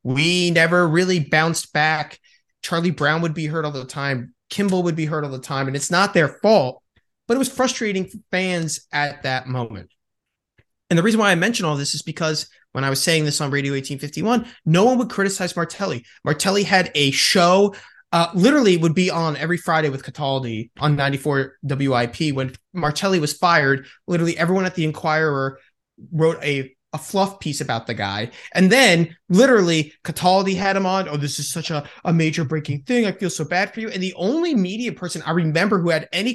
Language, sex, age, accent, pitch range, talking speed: English, male, 20-39, American, 150-195 Hz, 200 wpm